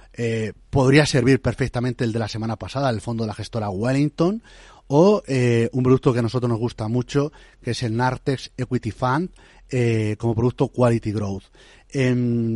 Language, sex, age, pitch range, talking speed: Spanish, male, 30-49, 115-140 Hz, 175 wpm